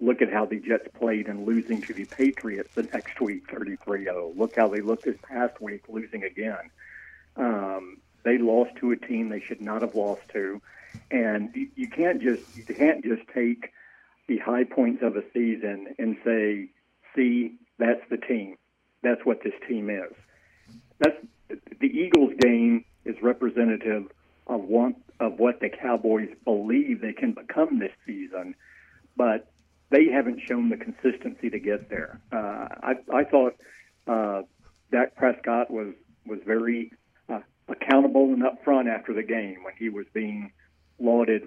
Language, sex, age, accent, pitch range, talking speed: English, male, 60-79, American, 105-130 Hz, 160 wpm